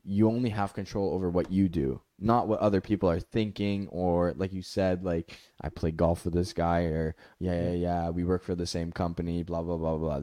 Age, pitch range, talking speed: 10-29, 95-125 Hz, 230 wpm